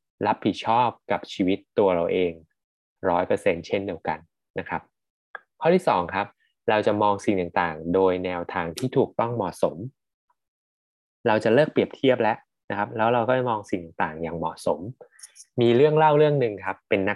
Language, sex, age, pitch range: Thai, male, 20-39, 95-140 Hz